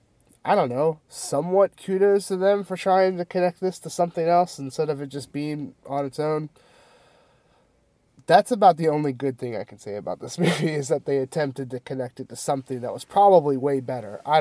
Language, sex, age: English, male, 30-49